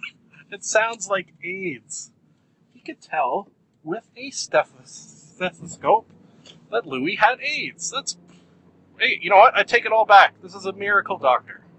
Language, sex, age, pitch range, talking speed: English, male, 30-49, 140-185 Hz, 150 wpm